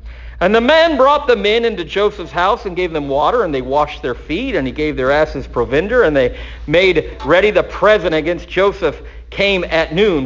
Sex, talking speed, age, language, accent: male, 205 wpm, 50-69, English, American